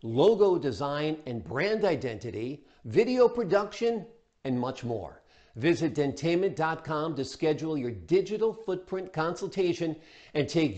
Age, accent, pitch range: 50-69, American, 135-175 Hz